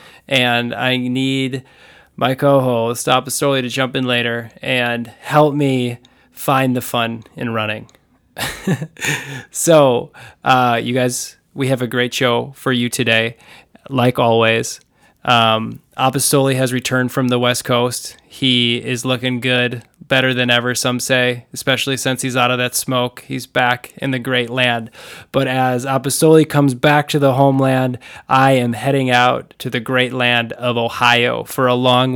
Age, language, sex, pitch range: 20-39, English, male, 125-135 Hz